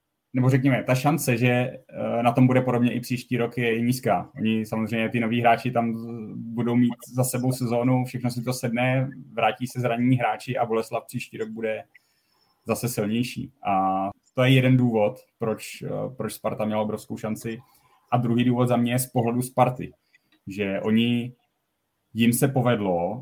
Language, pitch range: Czech, 105-125 Hz